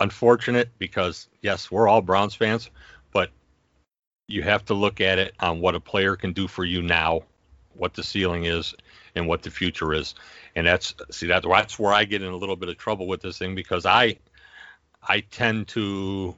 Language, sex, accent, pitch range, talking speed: English, male, American, 90-105 Hz, 195 wpm